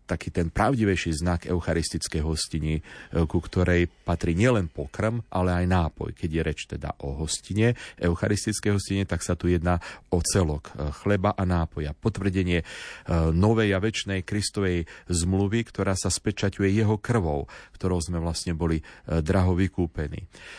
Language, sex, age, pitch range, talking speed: Slovak, male, 40-59, 80-100 Hz, 140 wpm